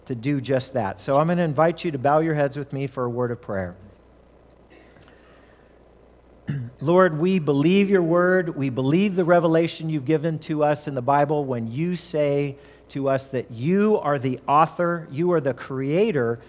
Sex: male